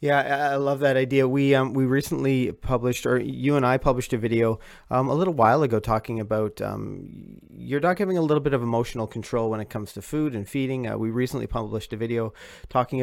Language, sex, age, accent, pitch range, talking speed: English, male, 30-49, American, 115-140 Hz, 220 wpm